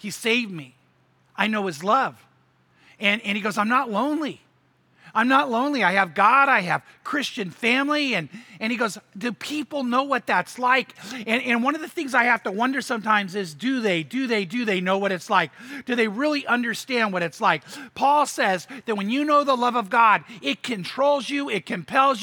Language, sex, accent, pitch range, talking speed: English, male, American, 210-270 Hz, 210 wpm